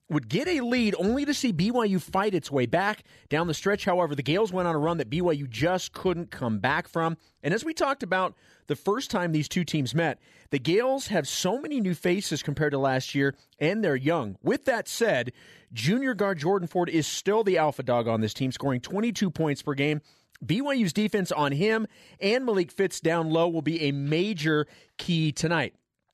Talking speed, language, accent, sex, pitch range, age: 205 wpm, English, American, male, 145-185 Hz, 40-59